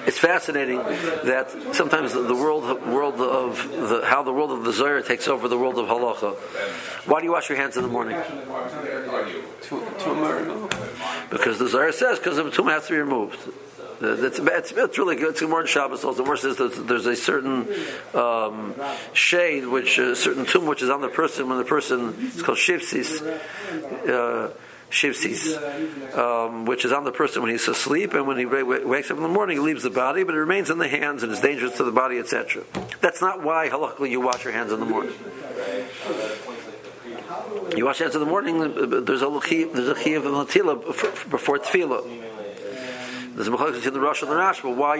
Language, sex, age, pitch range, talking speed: English, male, 50-69, 125-185 Hz, 190 wpm